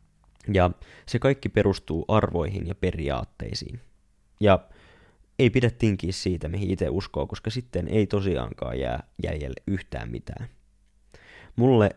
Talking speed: 120 wpm